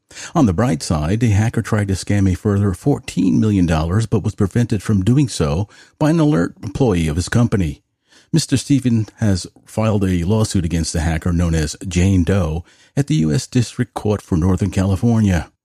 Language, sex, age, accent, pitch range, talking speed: English, male, 50-69, American, 90-115 Hz, 180 wpm